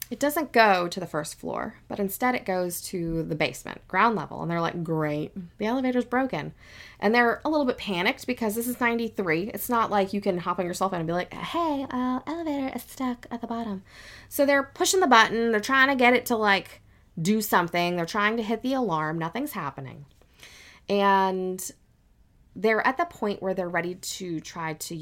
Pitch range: 160-235 Hz